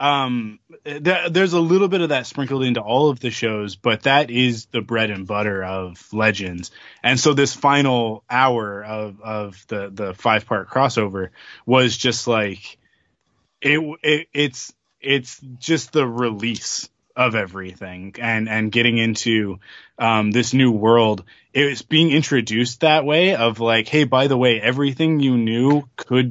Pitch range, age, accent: 110-140 Hz, 20-39, American